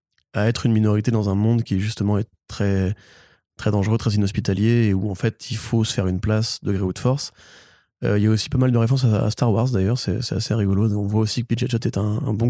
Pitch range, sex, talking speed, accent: 105-120 Hz, male, 275 wpm, French